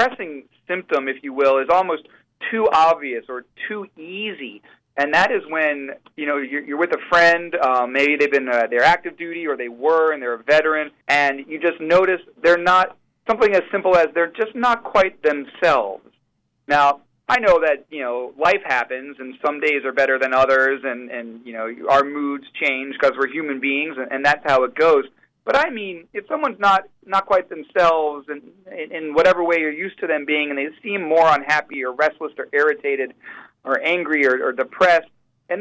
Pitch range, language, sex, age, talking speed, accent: 135-175 Hz, English, male, 40-59, 200 wpm, American